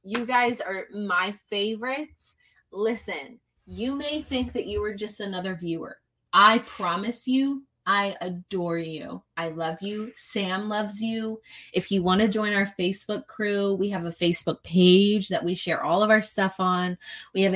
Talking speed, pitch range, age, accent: 170 wpm, 180-225 Hz, 20-39, American